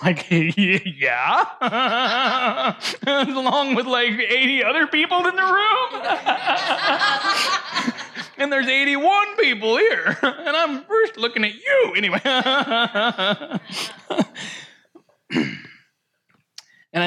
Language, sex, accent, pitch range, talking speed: English, male, American, 130-190 Hz, 90 wpm